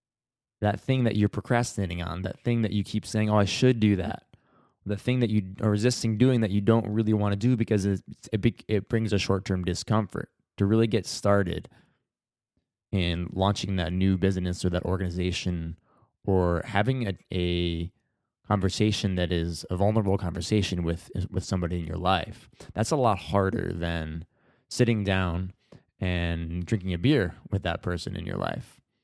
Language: English